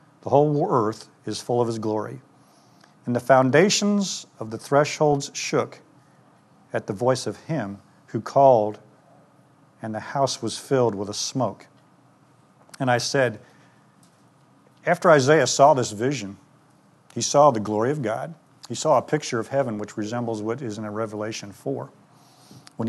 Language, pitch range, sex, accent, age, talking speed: English, 110-140 Hz, male, American, 50-69, 150 wpm